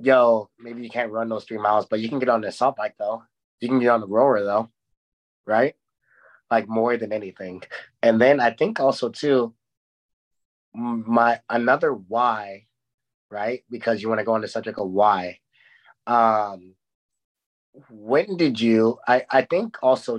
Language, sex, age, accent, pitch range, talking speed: English, male, 30-49, American, 105-115 Hz, 165 wpm